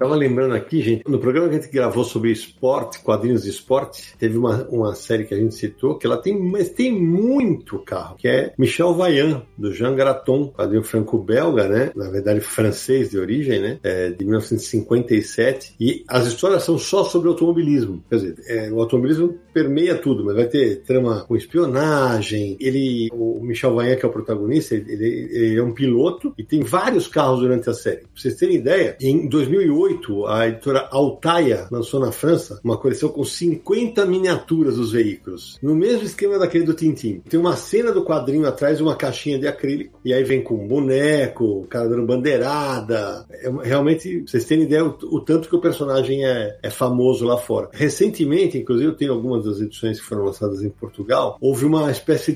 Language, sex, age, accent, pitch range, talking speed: Portuguese, male, 50-69, Brazilian, 115-160 Hz, 190 wpm